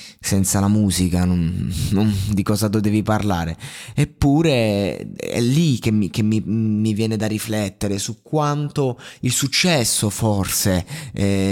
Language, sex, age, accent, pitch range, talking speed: Italian, male, 20-39, native, 100-135 Hz, 140 wpm